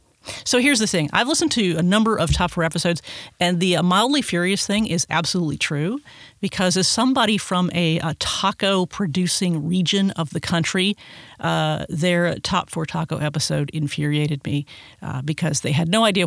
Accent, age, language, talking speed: American, 40-59, English, 175 wpm